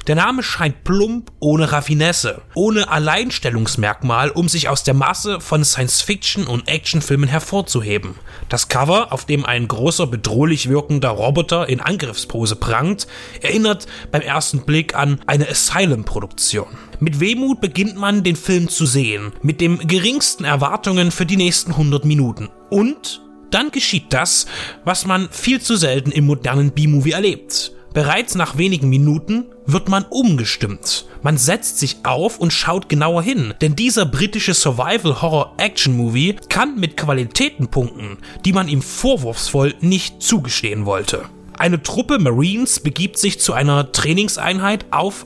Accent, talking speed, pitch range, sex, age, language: German, 140 wpm, 135-190 Hz, male, 30-49, German